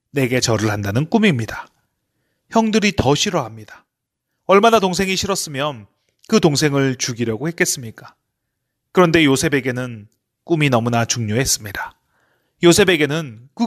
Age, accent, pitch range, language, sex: 30-49, native, 125-185 Hz, Korean, male